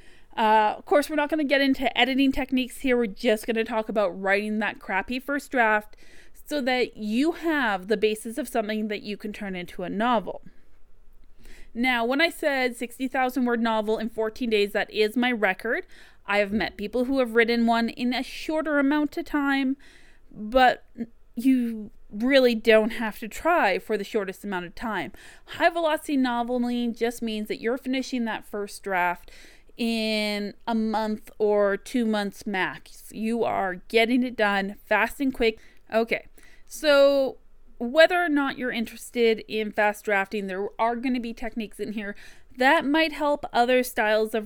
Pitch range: 210-260 Hz